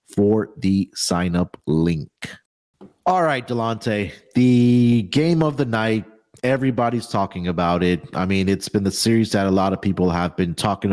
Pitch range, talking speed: 95-120 Hz, 170 wpm